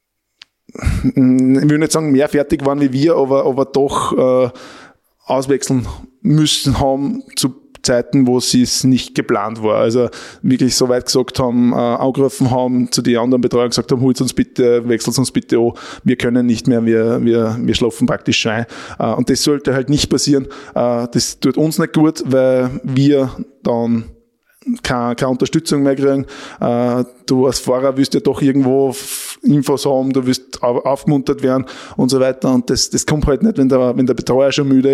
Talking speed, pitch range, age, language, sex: 180 wpm, 125-135 Hz, 20-39, German, male